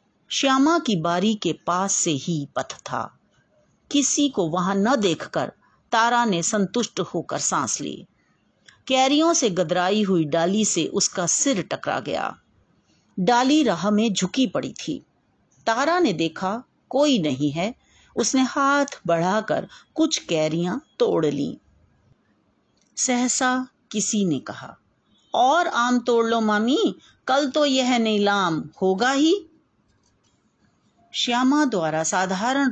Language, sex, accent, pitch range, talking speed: Hindi, female, native, 170-255 Hz, 125 wpm